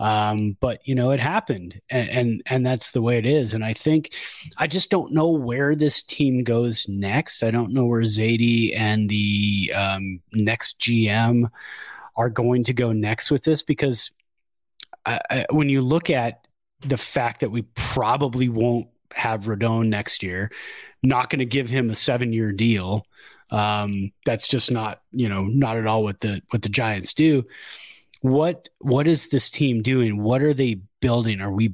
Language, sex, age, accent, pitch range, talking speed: English, male, 30-49, American, 110-140 Hz, 180 wpm